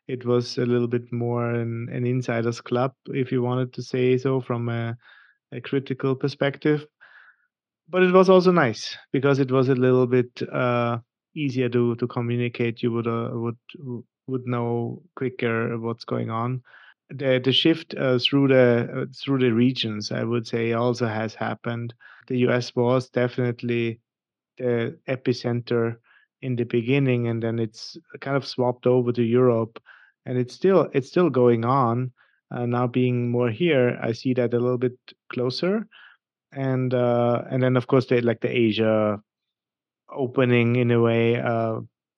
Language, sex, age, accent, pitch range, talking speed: English, male, 30-49, German, 120-130 Hz, 165 wpm